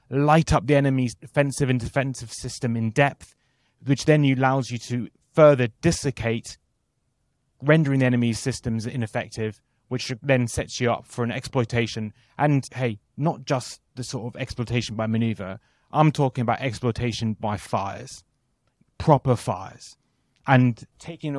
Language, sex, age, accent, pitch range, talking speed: English, male, 30-49, British, 115-135 Hz, 140 wpm